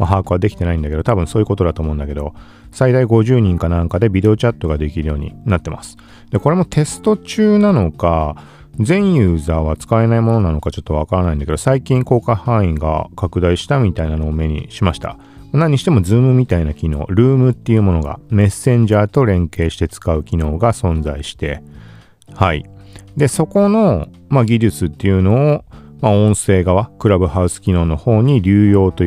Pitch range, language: 80-125 Hz, Japanese